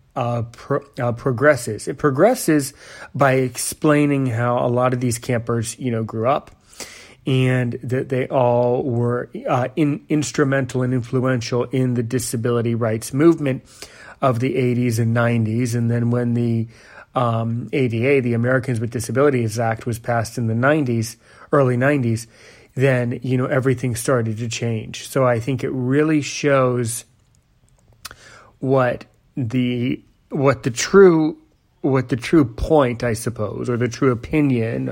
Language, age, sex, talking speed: English, 30-49, male, 145 wpm